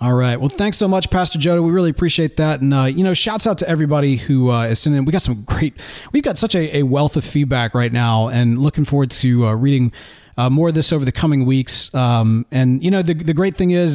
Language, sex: English, male